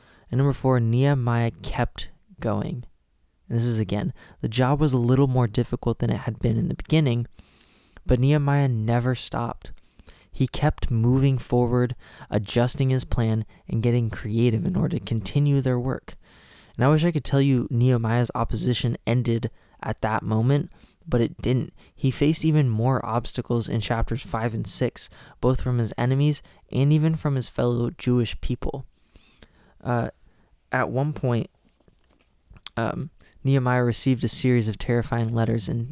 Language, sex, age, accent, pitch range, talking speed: English, male, 20-39, American, 115-130 Hz, 155 wpm